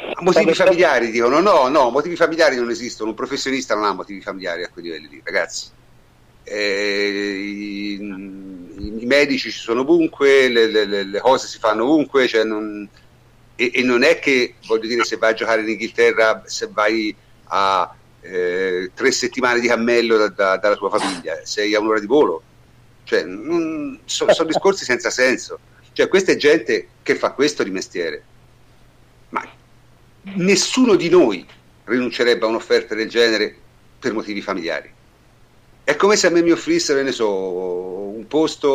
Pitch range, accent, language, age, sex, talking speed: 110-170 Hz, native, Italian, 50-69, male, 165 wpm